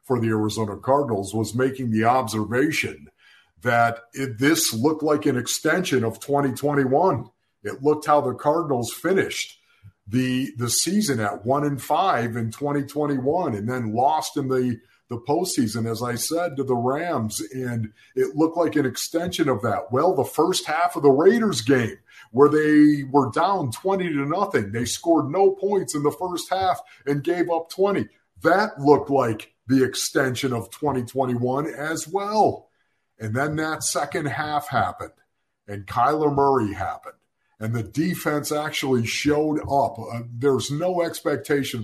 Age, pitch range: 50-69, 120-150 Hz